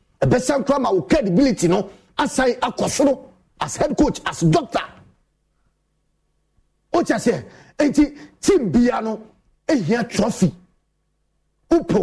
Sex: male